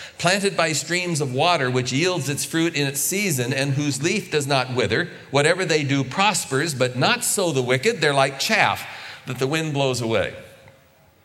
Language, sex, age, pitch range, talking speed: English, male, 40-59, 115-160 Hz, 185 wpm